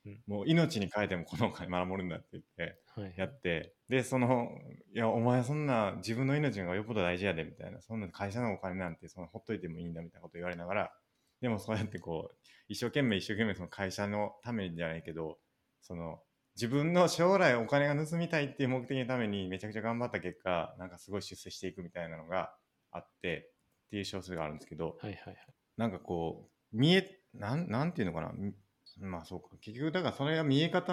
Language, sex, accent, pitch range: Japanese, male, native, 90-135 Hz